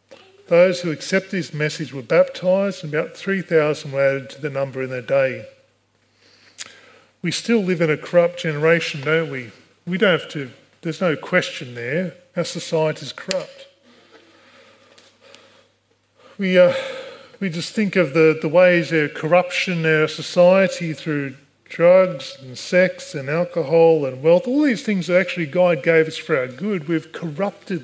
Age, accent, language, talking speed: 40-59, Australian, English, 160 wpm